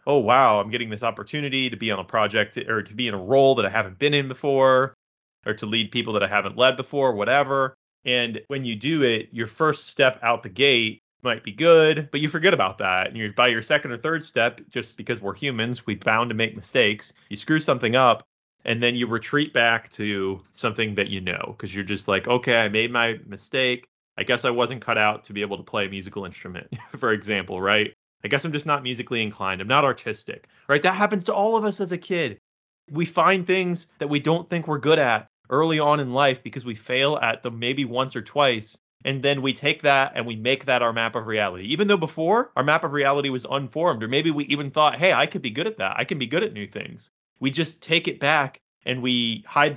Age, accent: 30-49, American